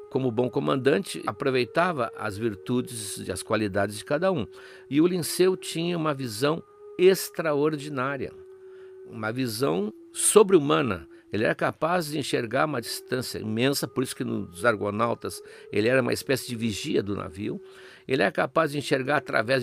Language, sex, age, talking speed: Portuguese, male, 60-79, 150 wpm